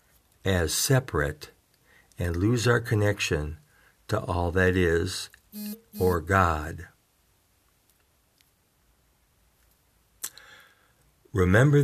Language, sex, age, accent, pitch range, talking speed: English, male, 60-79, American, 90-115 Hz, 65 wpm